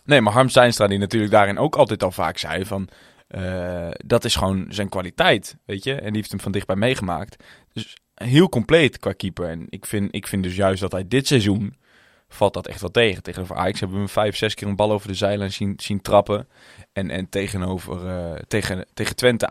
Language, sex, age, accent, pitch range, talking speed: Dutch, male, 20-39, Dutch, 95-120 Hz, 215 wpm